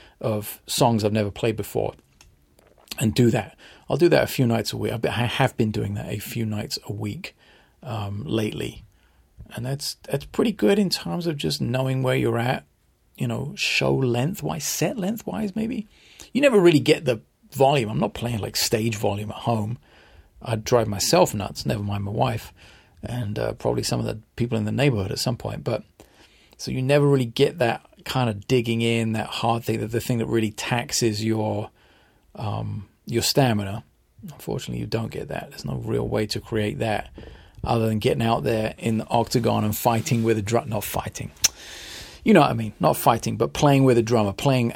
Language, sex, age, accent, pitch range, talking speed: English, male, 40-59, British, 105-130 Hz, 200 wpm